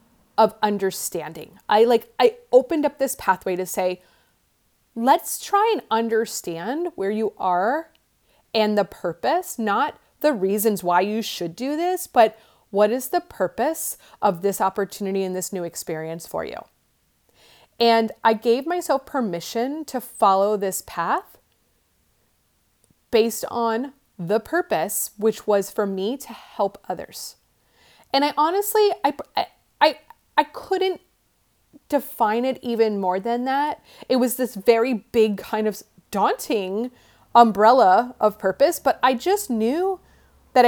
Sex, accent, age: female, American, 30-49